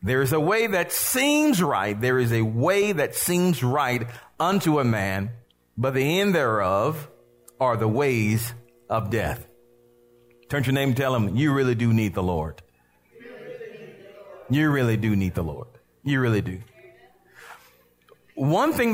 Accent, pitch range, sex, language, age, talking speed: American, 120-180 Hz, male, English, 40-59, 175 wpm